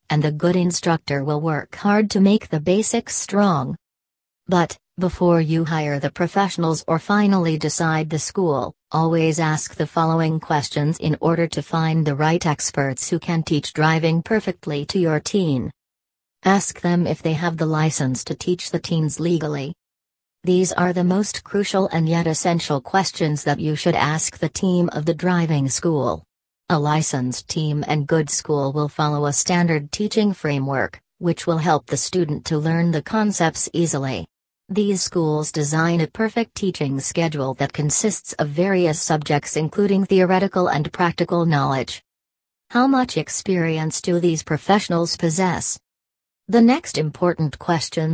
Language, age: English, 40-59